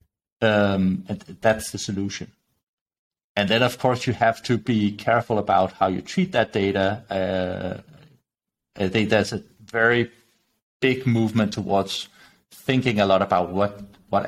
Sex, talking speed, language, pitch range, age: male, 145 wpm, English, 100-125 Hz, 30-49